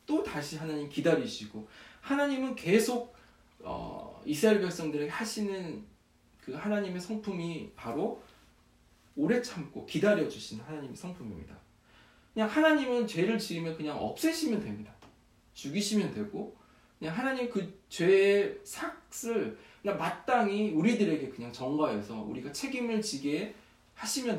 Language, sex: English, male